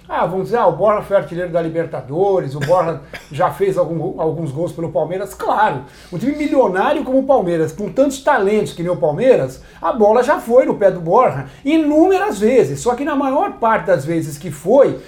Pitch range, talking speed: 175-250 Hz, 205 wpm